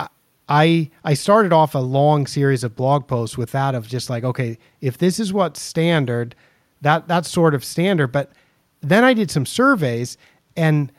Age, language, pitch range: 40-59, English, 135-175 Hz